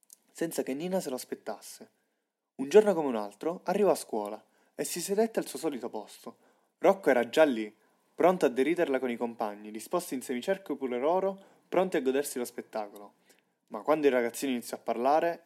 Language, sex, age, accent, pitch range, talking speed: Italian, male, 20-39, native, 120-185 Hz, 185 wpm